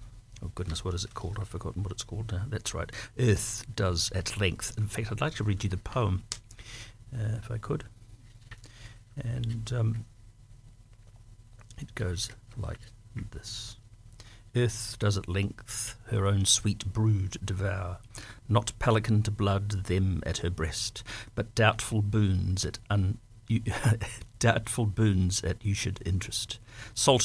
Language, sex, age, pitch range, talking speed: English, male, 60-79, 100-115 Hz, 145 wpm